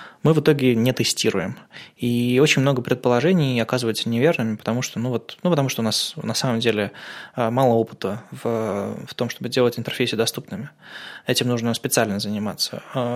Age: 20-39